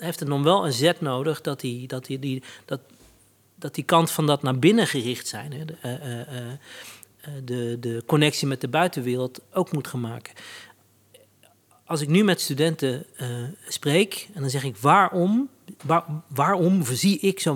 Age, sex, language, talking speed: 40-59, male, Dutch, 180 wpm